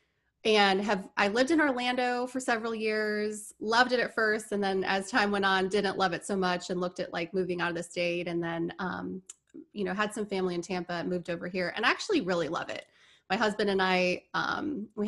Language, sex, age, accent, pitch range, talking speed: English, female, 20-39, American, 185-220 Hz, 230 wpm